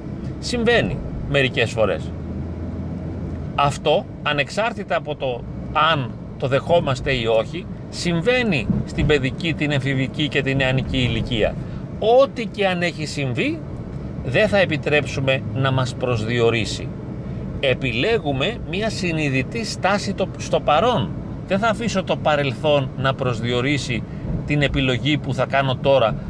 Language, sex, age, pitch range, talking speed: Greek, male, 40-59, 130-180 Hz, 115 wpm